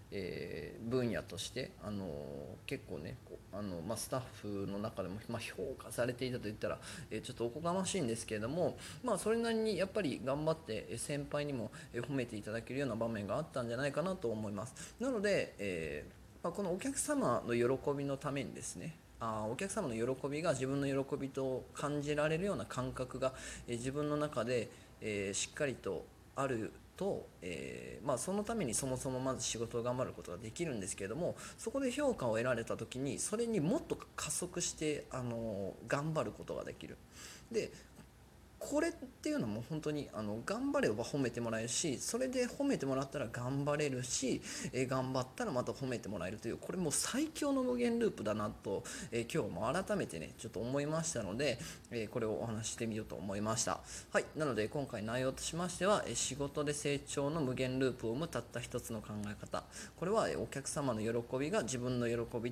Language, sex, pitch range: Japanese, male, 115-155 Hz